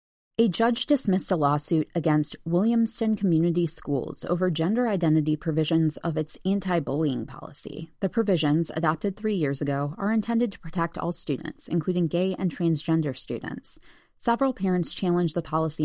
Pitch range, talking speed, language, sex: 150-190 Hz, 150 wpm, English, female